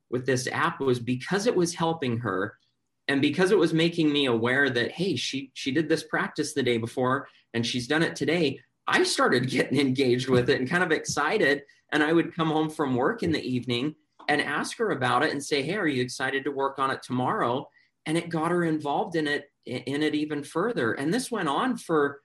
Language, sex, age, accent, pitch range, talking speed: English, male, 30-49, American, 120-145 Hz, 225 wpm